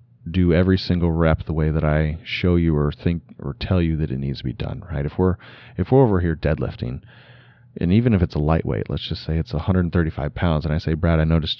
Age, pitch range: 30-49, 80-110 Hz